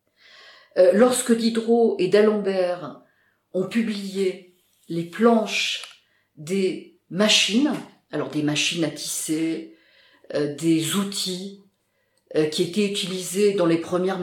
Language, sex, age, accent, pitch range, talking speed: French, female, 50-69, French, 165-210 Hz, 95 wpm